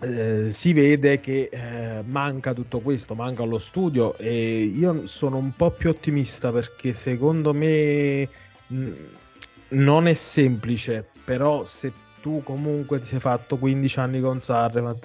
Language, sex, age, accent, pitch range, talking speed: Italian, male, 20-39, native, 100-125 Hz, 150 wpm